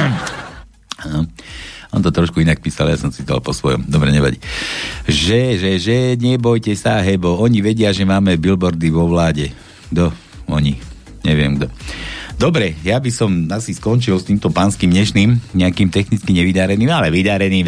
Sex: male